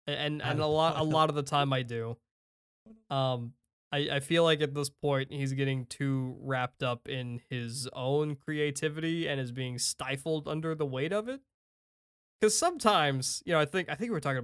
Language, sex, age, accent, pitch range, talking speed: English, male, 20-39, American, 125-165 Hz, 200 wpm